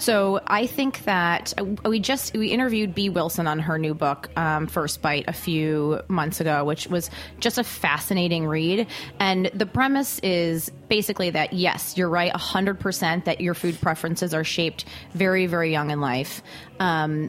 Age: 20-39